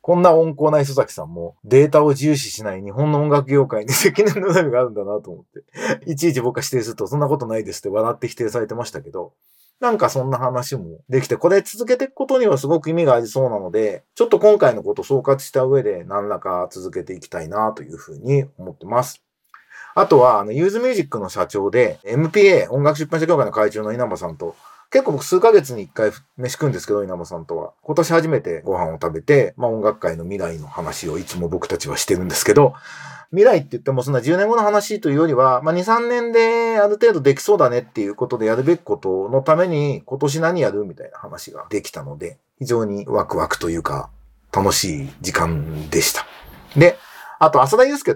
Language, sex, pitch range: Japanese, male, 120-200 Hz